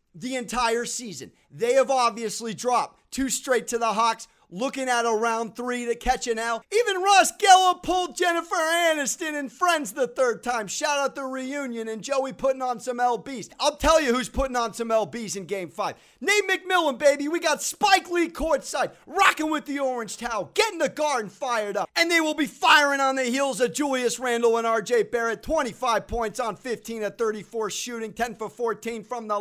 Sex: male